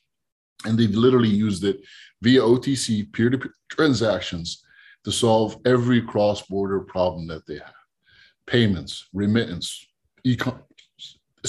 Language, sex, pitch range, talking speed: English, male, 100-130 Hz, 100 wpm